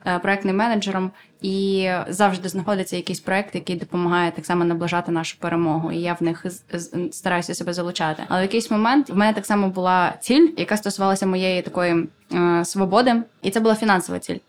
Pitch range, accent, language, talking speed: 175-195 Hz, native, Ukrainian, 180 wpm